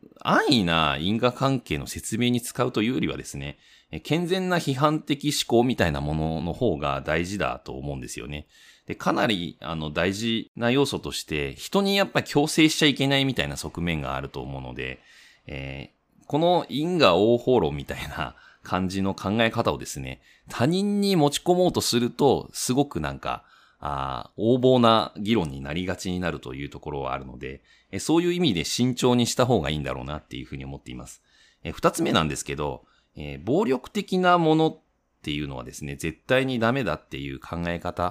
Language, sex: Japanese, male